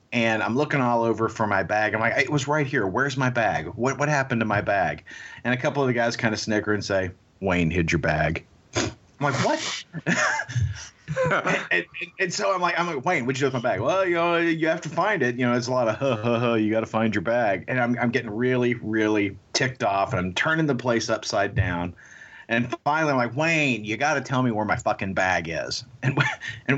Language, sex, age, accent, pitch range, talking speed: English, male, 40-59, American, 105-140 Hz, 245 wpm